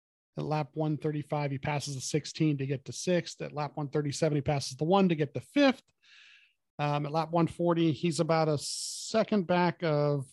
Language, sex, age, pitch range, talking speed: English, male, 40-59, 140-160 Hz, 185 wpm